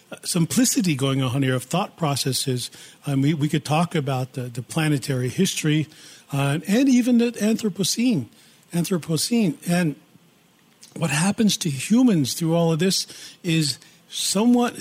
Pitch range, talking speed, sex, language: 150-185 Hz, 140 wpm, male, English